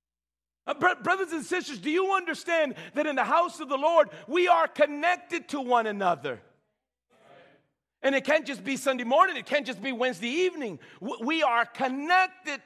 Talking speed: 165 wpm